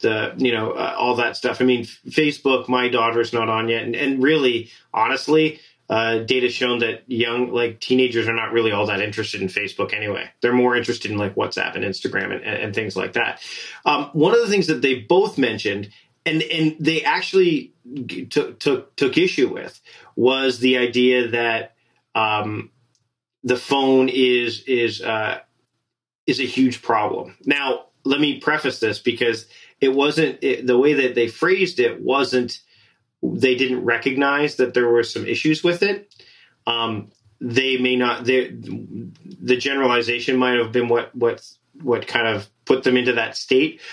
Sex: male